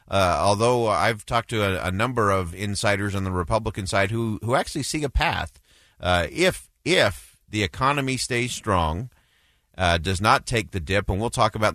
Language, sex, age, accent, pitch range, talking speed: English, male, 40-59, American, 90-120 Hz, 190 wpm